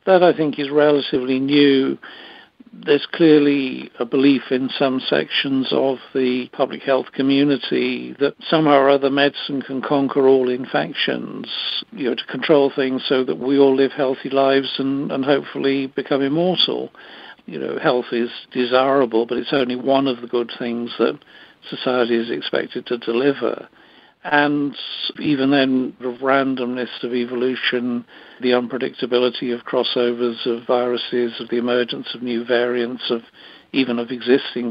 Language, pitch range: English, 125-140 Hz